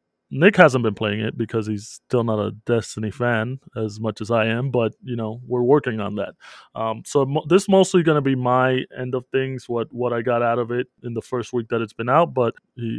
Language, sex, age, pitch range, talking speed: English, male, 20-39, 115-135 Hz, 250 wpm